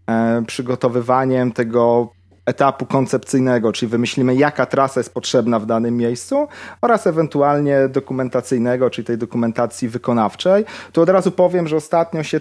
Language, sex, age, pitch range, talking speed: Polish, male, 30-49, 115-145 Hz, 130 wpm